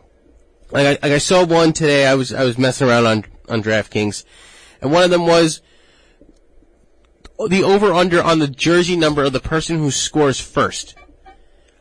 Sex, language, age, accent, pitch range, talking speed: male, English, 30-49, American, 115-175 Hz, 170 wpm